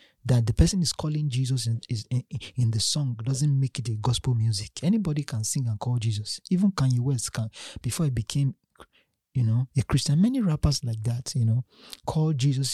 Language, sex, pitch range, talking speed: English, male, 120-155 Hz, 205 wpm